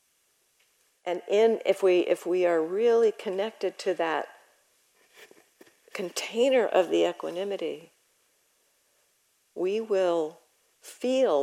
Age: 50-69